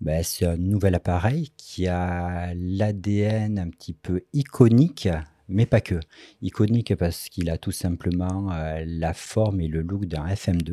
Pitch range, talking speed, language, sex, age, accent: 80-100 Hz, 160 wpm, French, male, 40-59, French